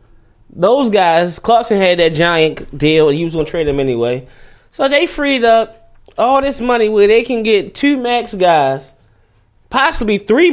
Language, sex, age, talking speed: English, male, 20-39, 170 wpm